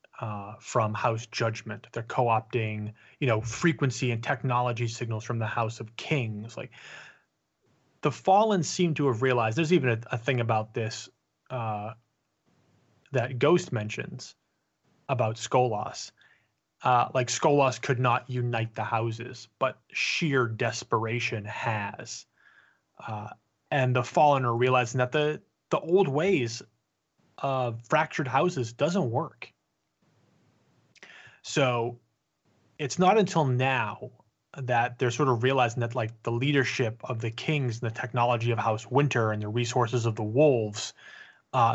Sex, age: male, 20-39